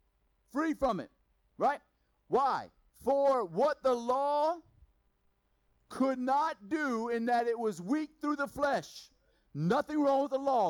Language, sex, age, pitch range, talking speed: Hungarian, male, 50-69, 155-250 Hz, 140 wpm